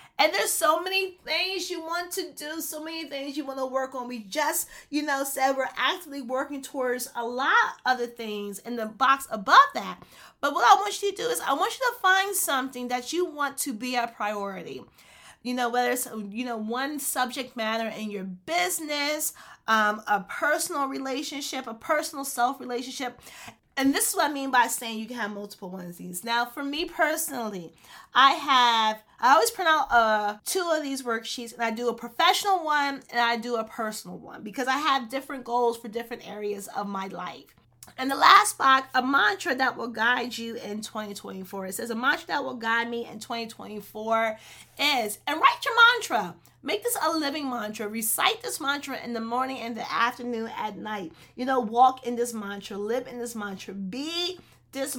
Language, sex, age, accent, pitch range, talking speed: English, female, 30-49, American, 225-300 Hz, 200 wpm